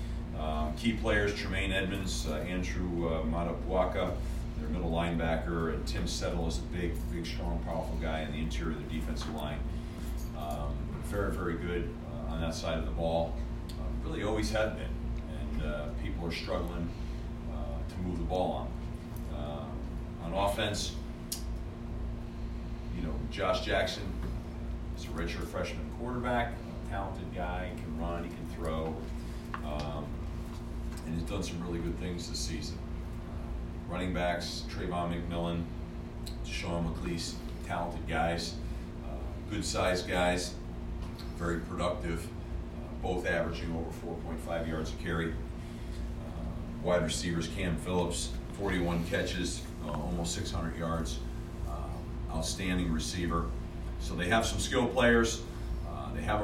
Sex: male